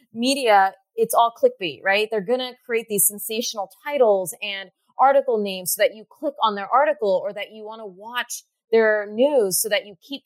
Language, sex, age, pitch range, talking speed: English, female, 20-39, 195-250 Hz, 200 wpm